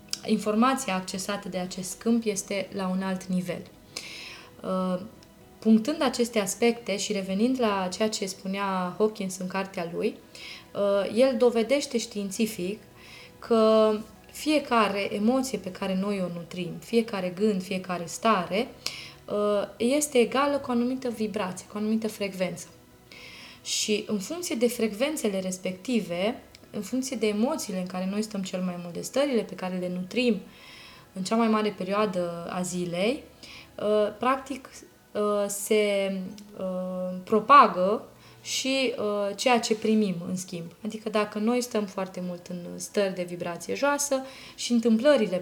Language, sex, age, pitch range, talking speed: Romanian, female, 20-39, 185-230 Hz, 130 wpm